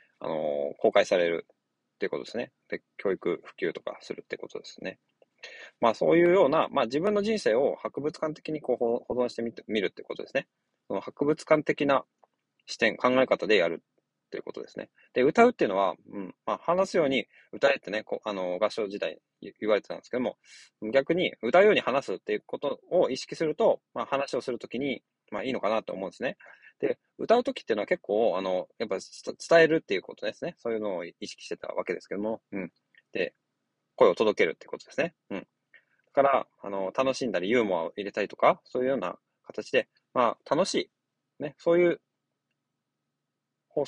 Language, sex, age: Japanese, male, 20-39